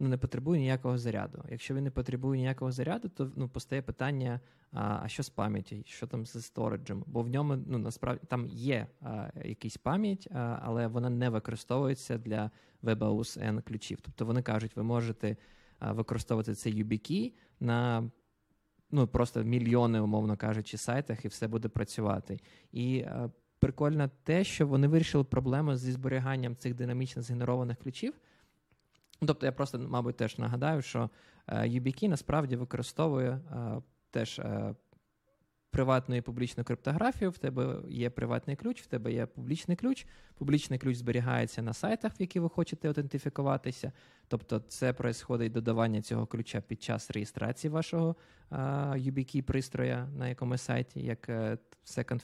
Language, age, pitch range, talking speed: Ukrainian, 20-39, 115-140 Hz, 150 wpm